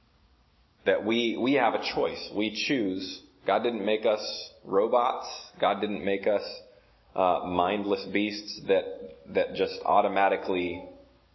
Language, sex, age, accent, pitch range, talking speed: English, male, 30-49, American, 100-125 Hz, 125 wpm